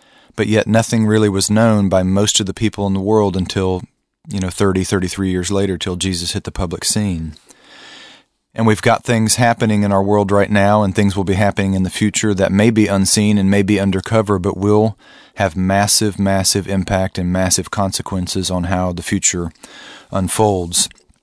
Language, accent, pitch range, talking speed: English, American, 95-110 Hz, 190 wpm